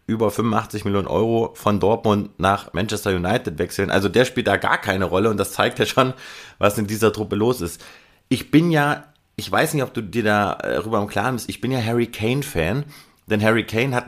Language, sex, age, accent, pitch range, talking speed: German, male, 30-49, German, 100-125 Hz, 215 wpm